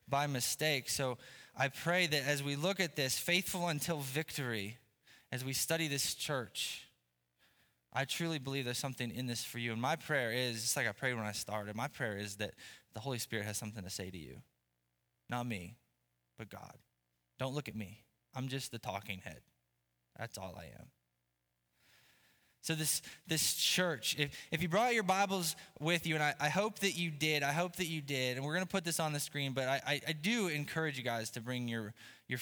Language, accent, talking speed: English, American, 210 wpm